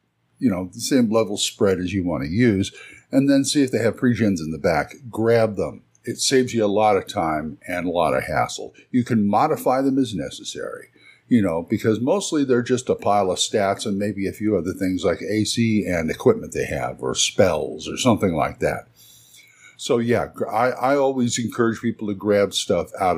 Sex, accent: male, American